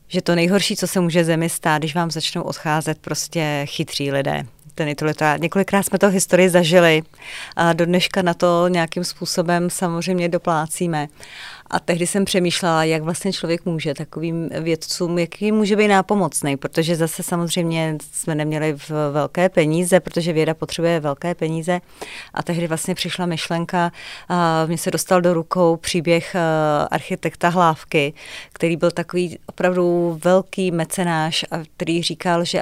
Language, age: Czech, 30-49